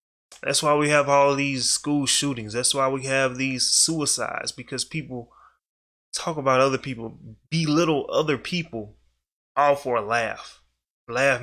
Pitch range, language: 115-140 Hz, English